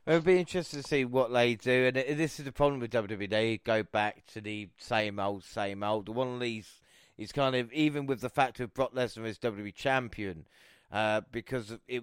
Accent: British